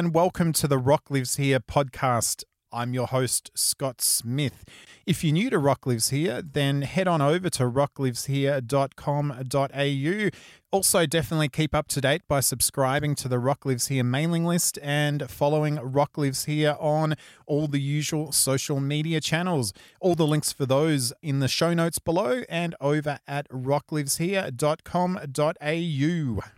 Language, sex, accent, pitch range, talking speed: English, male, Australian, 130-155 Hz, 150 wpm